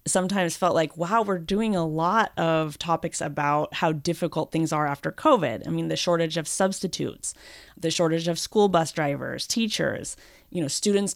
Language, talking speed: English, 175 wpm